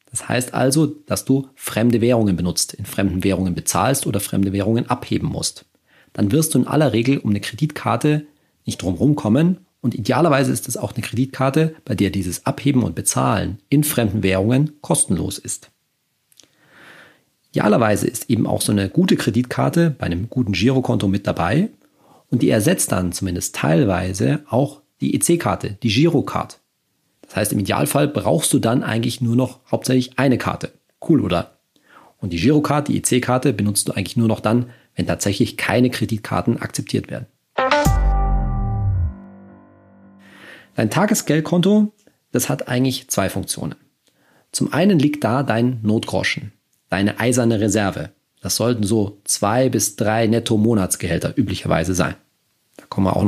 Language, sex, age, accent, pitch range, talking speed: German, male, 40-59, German, 100-135 Hz, 150 wpm